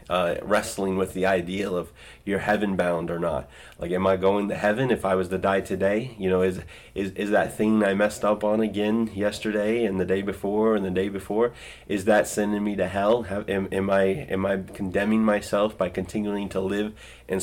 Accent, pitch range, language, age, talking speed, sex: American, 95-105 Hz, English, 30-49, 215 wpm, male